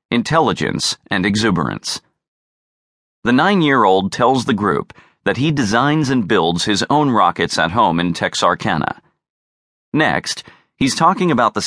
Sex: male